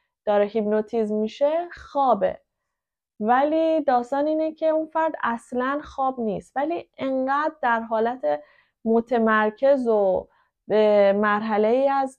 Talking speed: 115 wpm